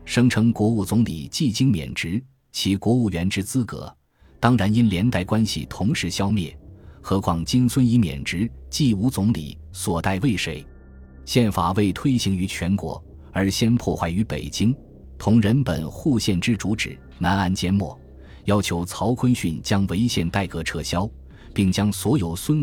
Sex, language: male, Chinese